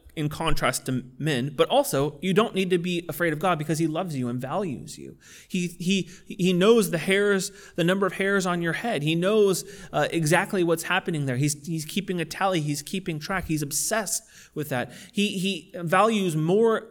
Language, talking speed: English, 200 wpm